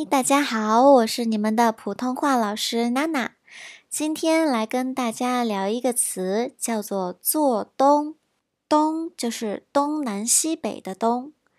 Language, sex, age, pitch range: Chinese, male, 20-39, 200-280 Hz